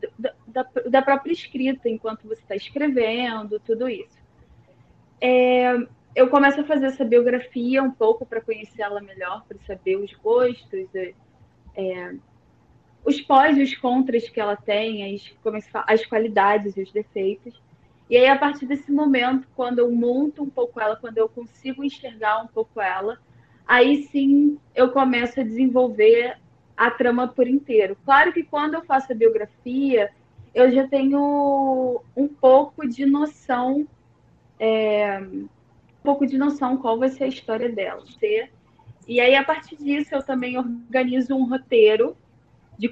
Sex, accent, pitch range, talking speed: female, Brazilian, 225-275 Hz, 150 wpm